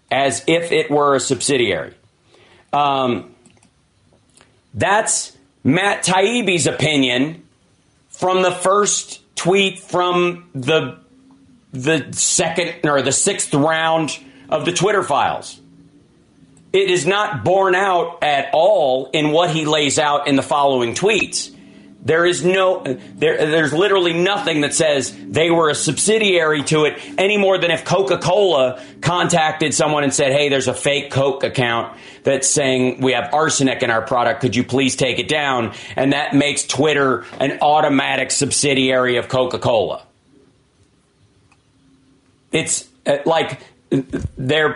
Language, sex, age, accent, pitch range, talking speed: English, male, 40-59, American, 130-170 Hz, 130 wpm